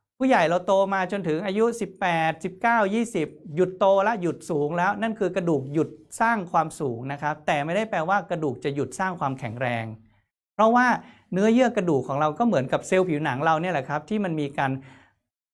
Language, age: Thai, 60-79